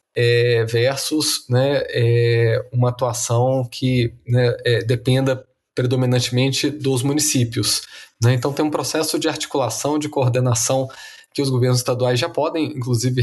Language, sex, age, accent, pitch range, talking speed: Portuguese, male, 20-39, Brazilian, 120-140 Hz, 130 wpm